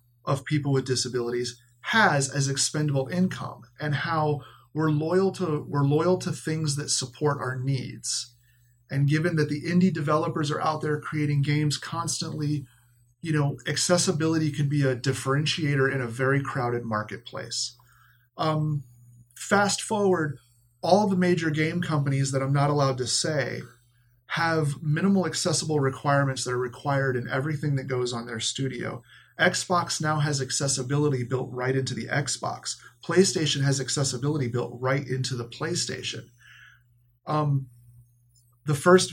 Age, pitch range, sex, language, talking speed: 30-49, 125-150 Hz, male, English, 145 wpm